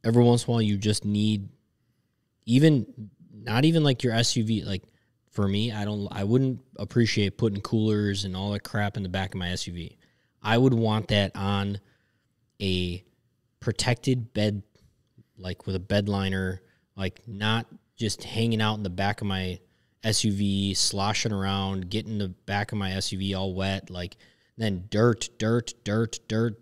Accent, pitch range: American, 100-125 Hz